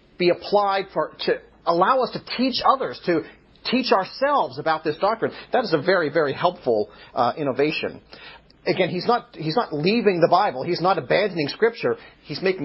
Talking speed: 175 wpm